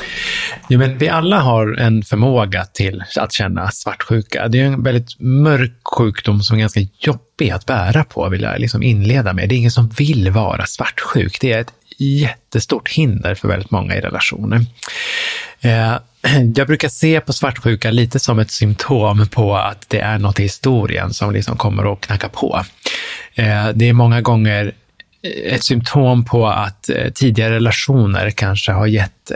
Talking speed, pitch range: 165 wpm, 105-120 Hz